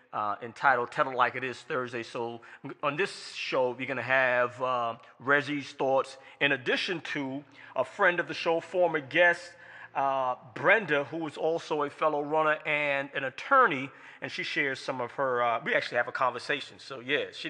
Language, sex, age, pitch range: English, male, 30-49, 120-160 Hz